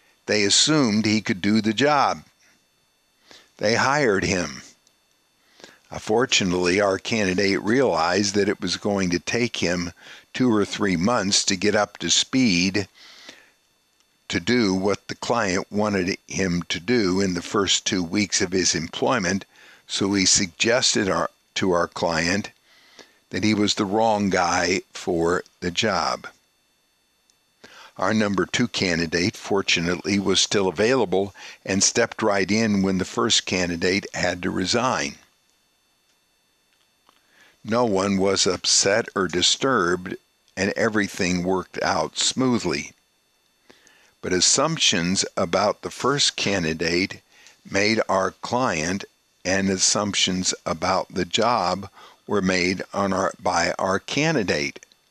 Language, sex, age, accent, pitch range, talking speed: English, male, 60-79, American, 90-105 Hz, 120 wpm